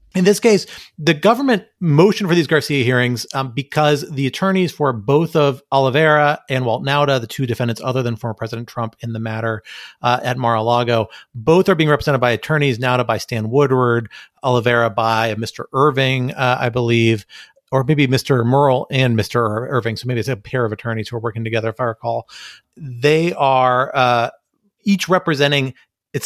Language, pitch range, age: English, 115-140 Hz, 40-59